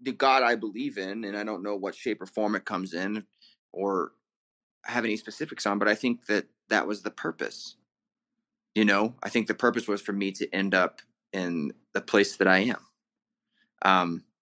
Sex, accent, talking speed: male, American, 200 wpm